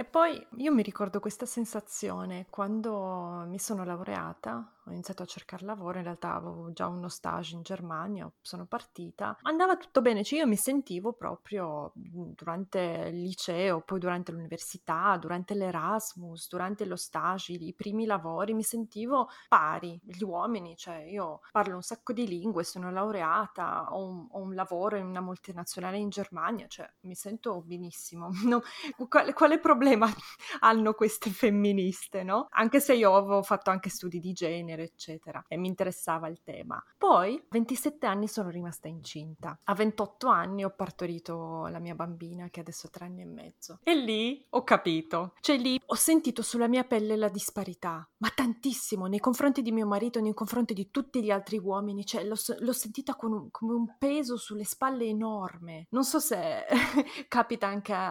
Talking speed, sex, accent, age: 170 wpm, female, native, 20-39